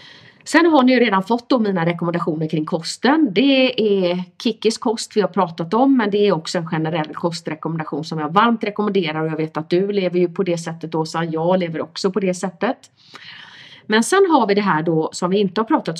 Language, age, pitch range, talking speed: Swedish, 30-49, 165-250 Hz, 220 wpm